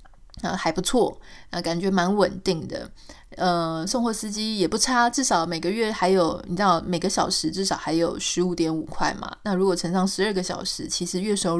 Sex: female